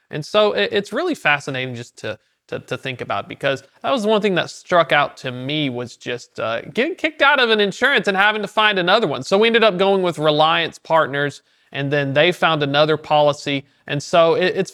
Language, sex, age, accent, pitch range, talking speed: English, male, 30-49, American, 145-195 Hz, 220 wpm